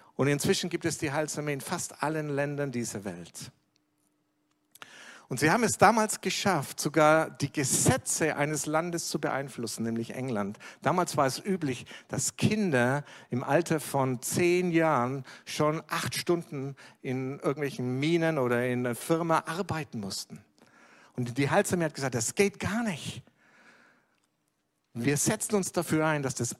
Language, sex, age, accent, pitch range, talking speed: German, male, 60-79, German, 130-180 Hz, 150 wpm